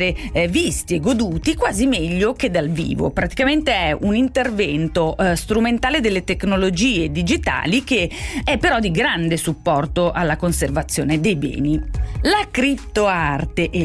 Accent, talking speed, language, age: native, 135 wpm, Italian, 30-49